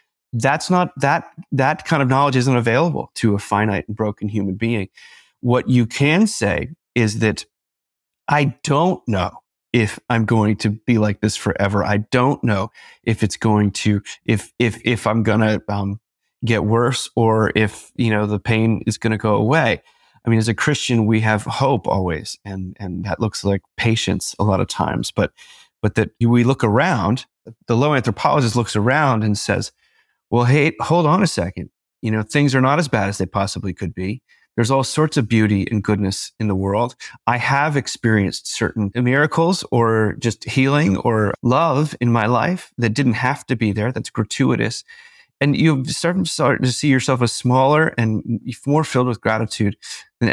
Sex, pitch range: male, 105-135 Hz